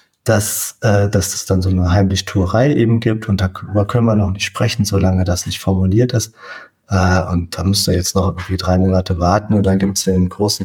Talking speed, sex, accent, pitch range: 220 wpm, male, German, 95-110 Hz